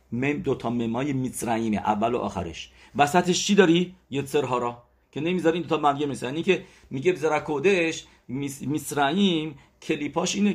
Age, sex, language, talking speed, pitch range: 50-69, male, English, 140 wpm, 110-150 Hz